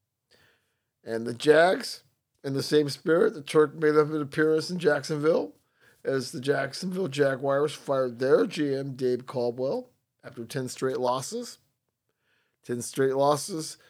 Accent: American